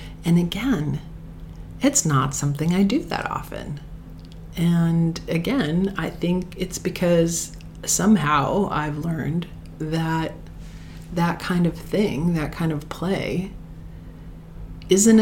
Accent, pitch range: American, 130-170 Hz